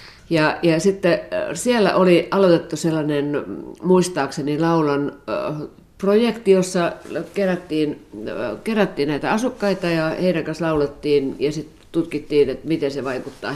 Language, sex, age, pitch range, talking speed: Finnish, female, 50-69, 145-180 Hz, 115 wpm